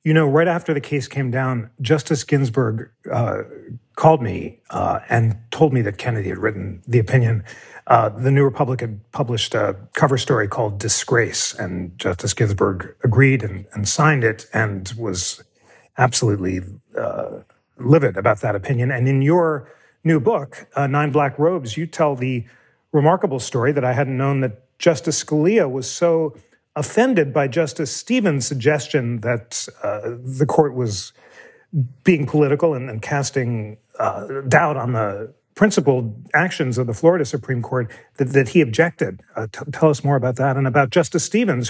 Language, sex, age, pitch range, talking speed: English, male, 40-59, 120-155 Hz, 165 wpm